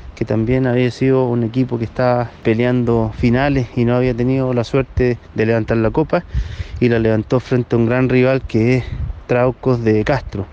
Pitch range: 115-135 Hz